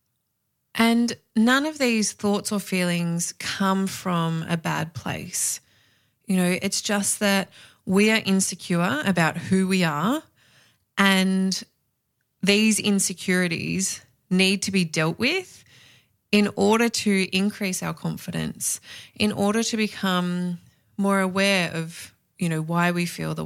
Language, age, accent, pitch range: English, 20-39, Australian, 175-210 Hz